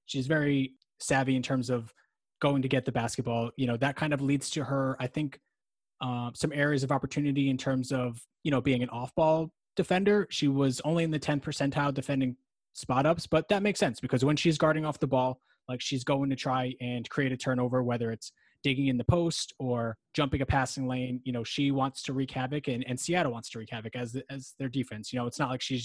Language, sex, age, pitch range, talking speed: English, male, 20-39, 120-145 Hz, 235 wpm